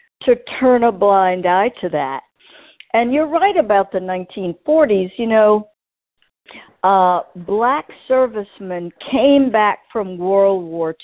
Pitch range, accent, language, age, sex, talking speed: 195-260 Hz, American, English, 60-79, female, 125 wpm